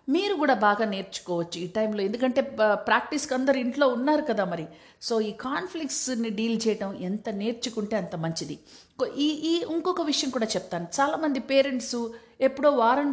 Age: 50-69